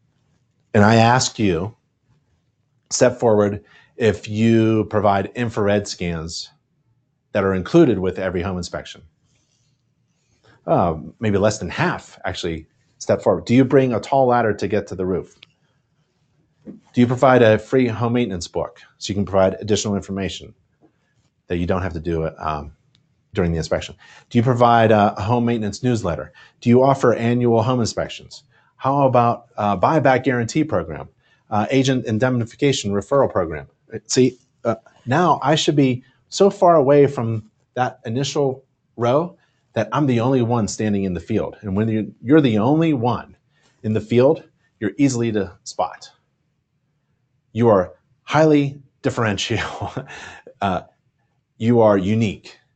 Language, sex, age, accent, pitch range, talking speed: English, male, 40-59, American, 100-135 Hz, 150 wpm